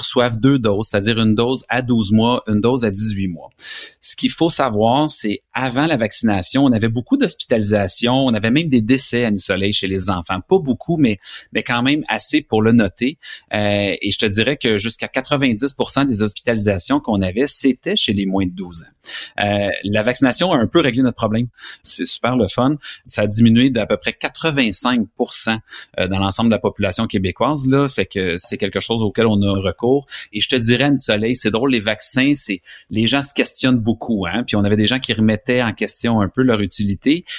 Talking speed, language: 210 wpm, French